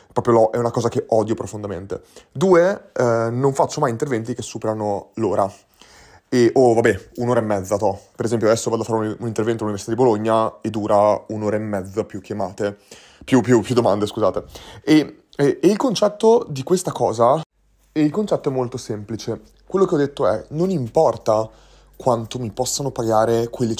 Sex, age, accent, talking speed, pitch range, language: male, 30-49, native, 185 wpm, 110-155 Hz, Italian